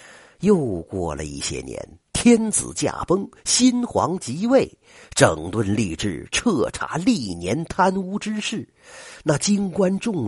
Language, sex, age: Chinese, male, 50-69